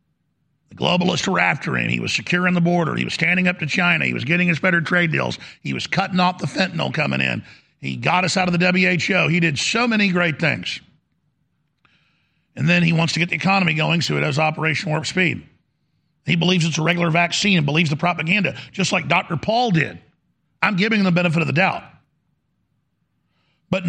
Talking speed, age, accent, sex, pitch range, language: 205 wpm, 50-69, American, male, 155-195 Hz, English